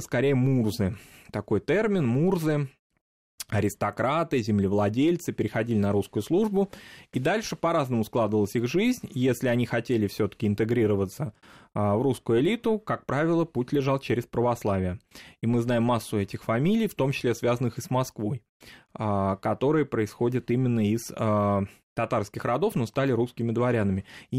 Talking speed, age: 135 wpm, 20-39